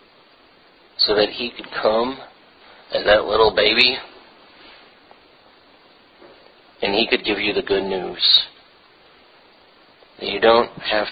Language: English